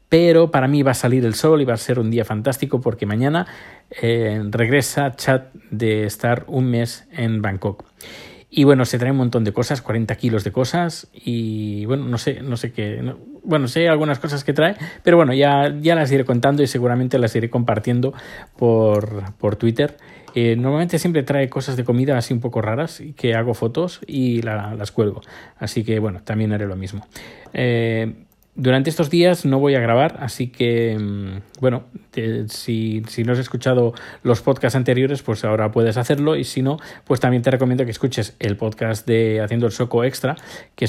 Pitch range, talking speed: 110-135 Hz, 195 wpm